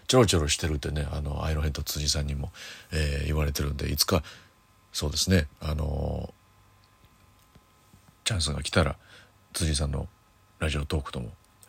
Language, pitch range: Japanese, 75-105 Hz